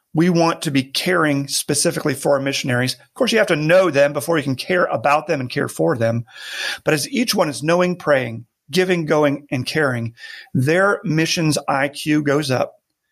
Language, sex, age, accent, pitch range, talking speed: English, male, 40-59, American, 140-165 Hz, 190 wpm